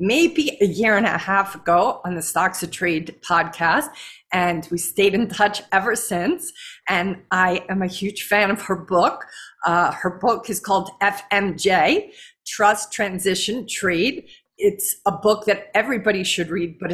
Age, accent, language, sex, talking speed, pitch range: 50-69, American, English, female, 165 wpm, 175-210 Hz